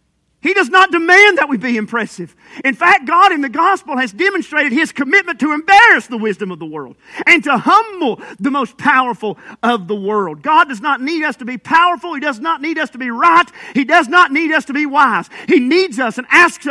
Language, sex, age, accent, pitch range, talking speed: English, male, 40-59, American, 215-310 Hz, 225 wpm